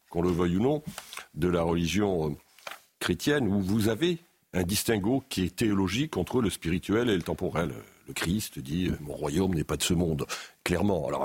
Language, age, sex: French, 50-69, male